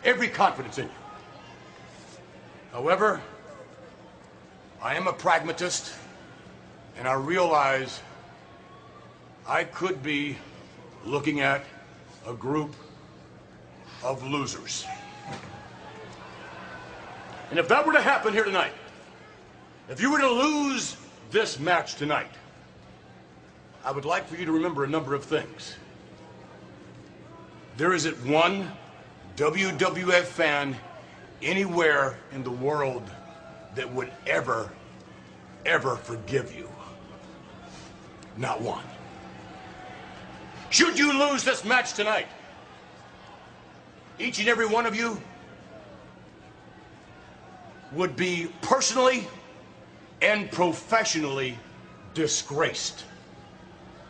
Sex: male